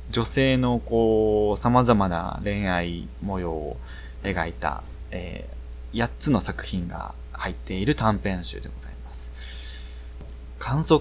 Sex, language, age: male, Japanese, 20-39